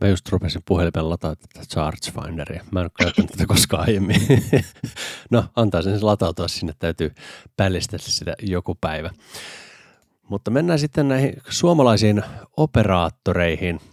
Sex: male